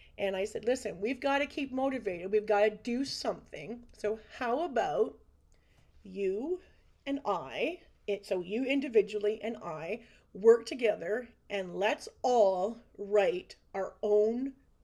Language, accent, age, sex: English, American, 40-59, female